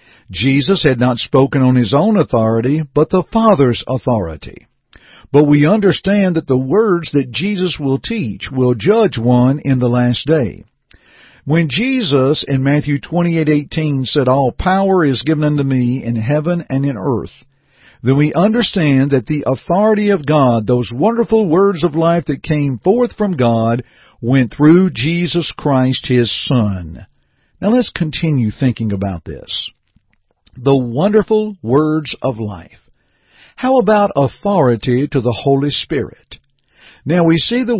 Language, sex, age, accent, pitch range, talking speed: English, male, 50-69, American, 125-175 Hz, 150 wpm